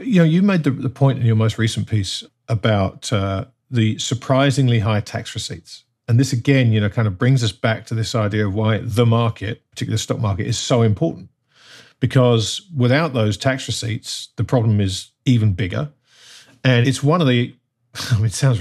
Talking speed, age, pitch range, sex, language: 195 wpm, 50-69, 115-140 Hz, male, English